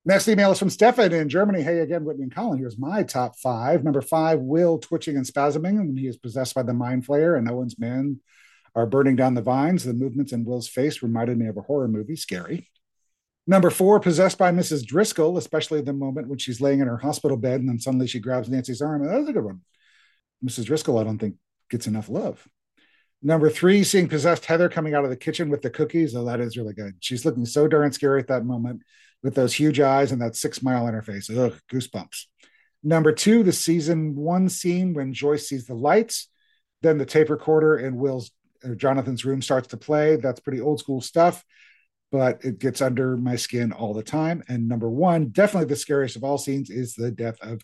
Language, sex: English, male